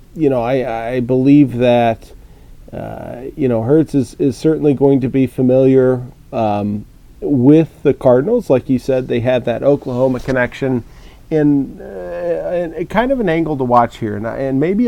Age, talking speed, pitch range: 40-59, 175 wpm, 120-145 Hz